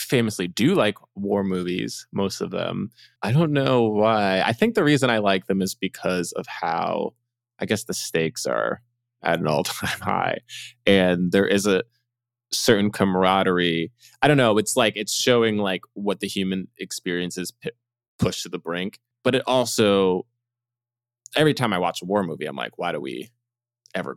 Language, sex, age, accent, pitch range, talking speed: English, male, 20-39, American, 95-125 Hz, 175 wpm